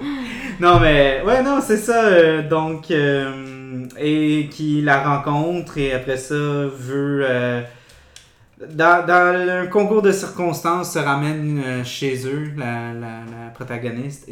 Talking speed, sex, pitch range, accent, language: 140 wpm, male, 120-155 Hz, Canadian, French